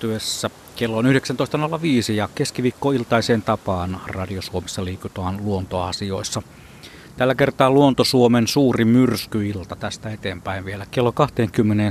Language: Finnish